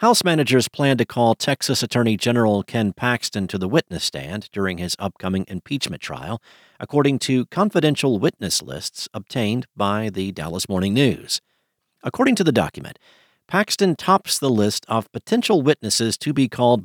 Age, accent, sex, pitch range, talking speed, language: 50-69, American, male, 100-130 Hz, 155 wpm, English